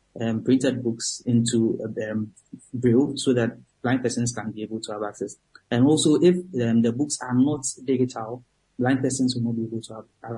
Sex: male